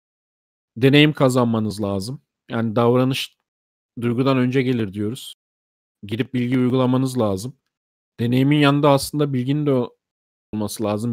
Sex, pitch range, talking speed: male, 115-140 Hz, 110 wpm